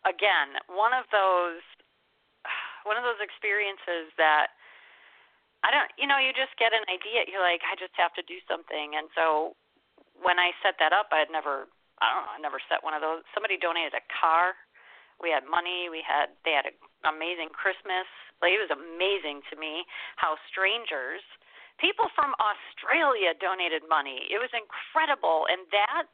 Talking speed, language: 175 wpm, English